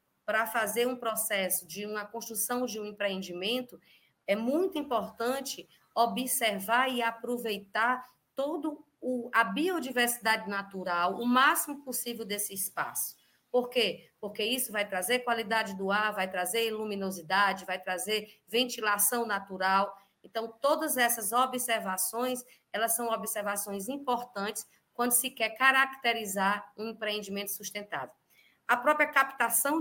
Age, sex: 20-39, female